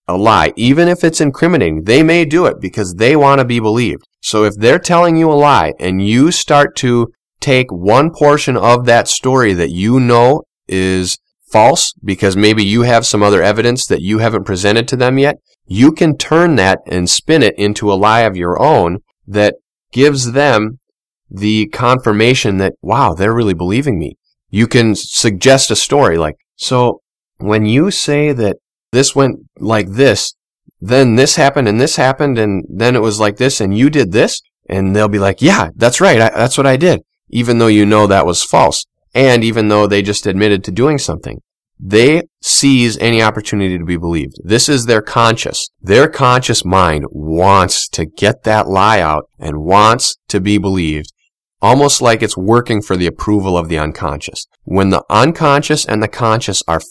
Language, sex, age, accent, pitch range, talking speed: English, male, 30-49, American, 100-130 Hz, 185 wpm